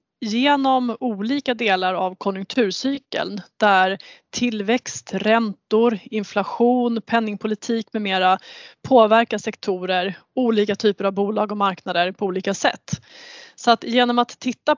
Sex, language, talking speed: female, Swedish, 115 wpm